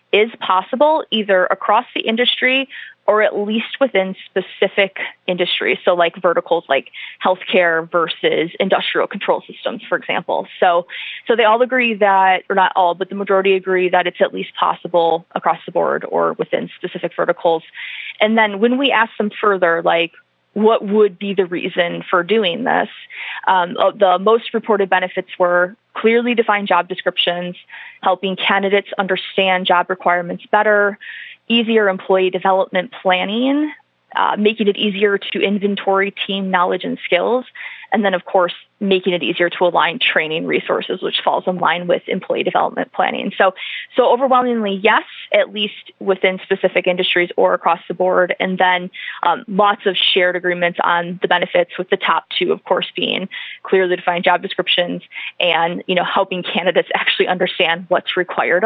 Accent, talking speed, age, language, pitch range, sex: American, 160 wpm, 20-39, English, 180-220 Hz, female